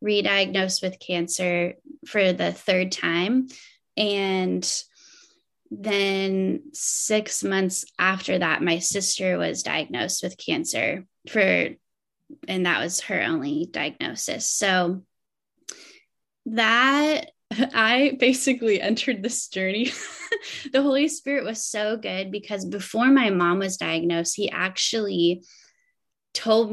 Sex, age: female, 10-29